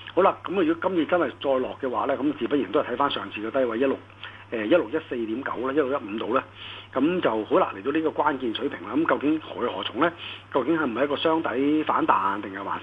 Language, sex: Chinese, male